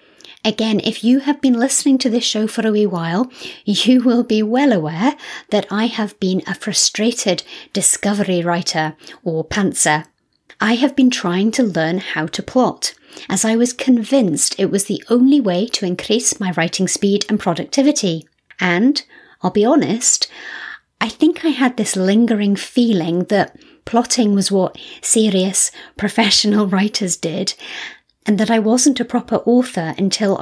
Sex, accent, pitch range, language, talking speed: female, British, 185-240 Hz, English, 160 wpm